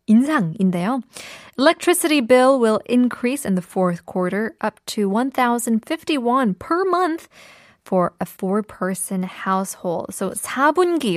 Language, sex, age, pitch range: Korean, female, 20-39, 190-250 Hz